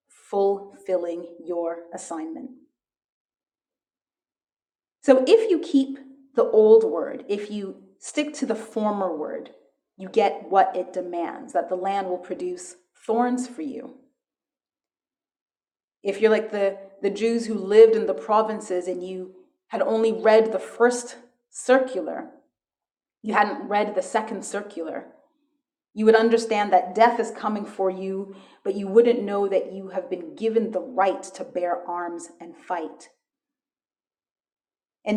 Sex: female